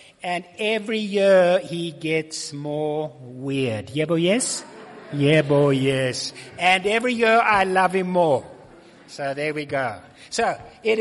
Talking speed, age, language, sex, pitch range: 140 wpm, 60-79, English, male, 145-215 Hz